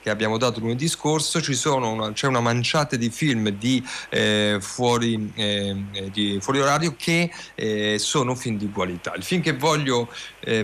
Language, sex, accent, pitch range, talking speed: Italian, male, native, 110-135 Hz, 170 wpm